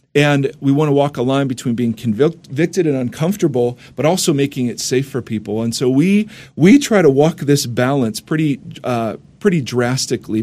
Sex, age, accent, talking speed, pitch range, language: male, 40-59, American, 185 wpm, 120-150 Hz, English